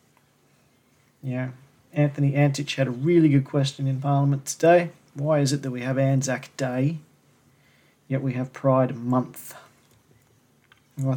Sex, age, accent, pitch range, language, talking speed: male, 40-59, Australian, 125-145 Hz, English, 135 wpm